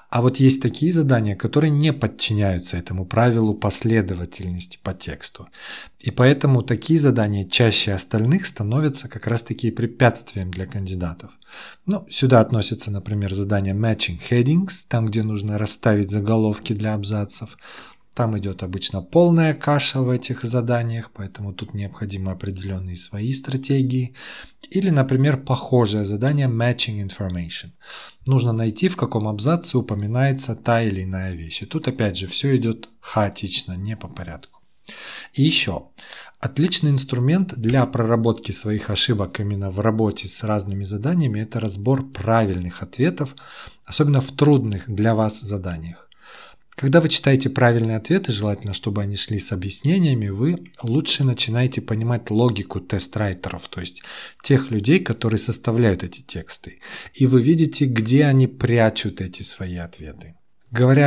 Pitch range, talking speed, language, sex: 100-130 Hz, 135 wpm, Russian, male